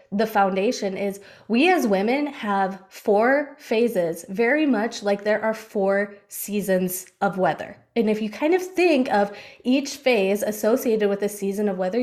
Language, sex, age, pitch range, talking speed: English, female, 20-39, 205-255 Hz, 165 wpm